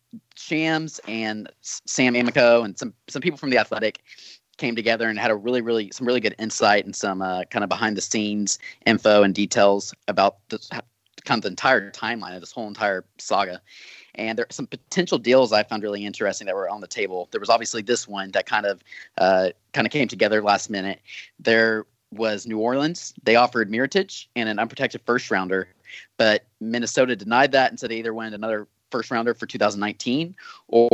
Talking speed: 195 wpm